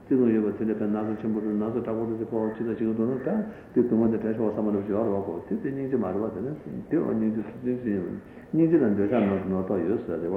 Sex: male